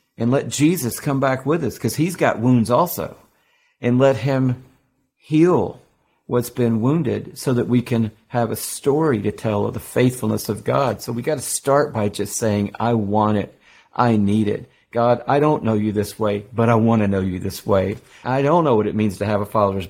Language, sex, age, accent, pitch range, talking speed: English, male, 50-69, American, 110-140 Hz, 215 wpm